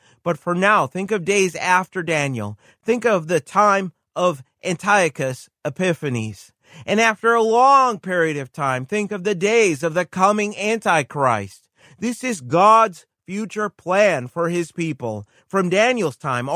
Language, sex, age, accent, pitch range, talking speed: English, male, 30-49, American, 140-205 Hz, 150 wpm